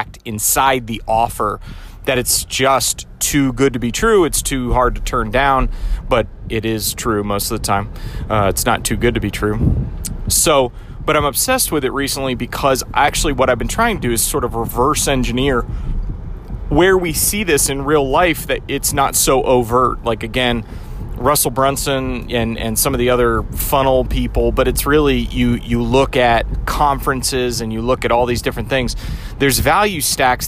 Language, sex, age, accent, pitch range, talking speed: English, male, 30-49, American, 110-140 Hz, 190 wpm